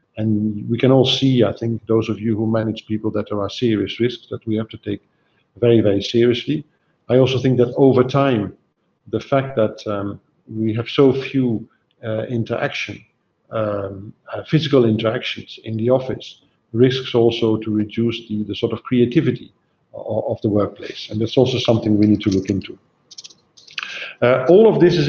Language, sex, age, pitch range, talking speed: English, male, 50-69, 110-140 Hz, 180 wpm